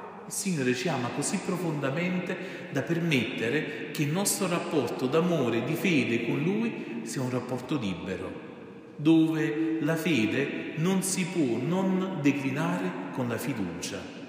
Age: 40-59